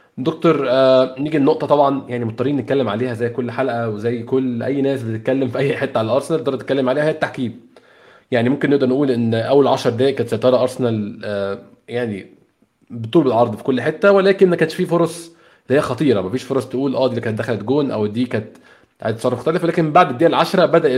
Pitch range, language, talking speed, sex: 120-150 Hz, Arabic, 205 wpm, male